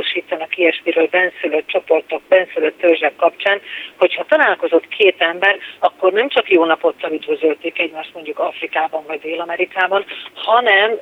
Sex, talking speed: female, 125 wpm